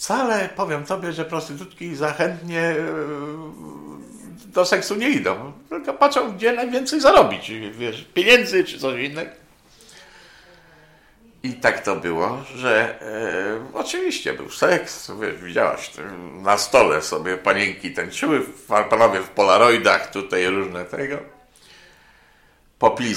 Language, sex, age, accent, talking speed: Polish, male, 50-69, native, 110 wpm